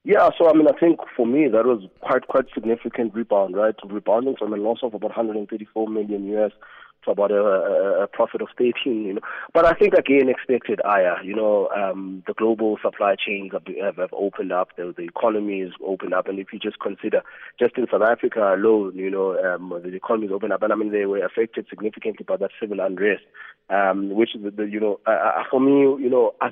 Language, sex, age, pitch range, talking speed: English, male, 20-39, 95-110 Hz, 225 wpm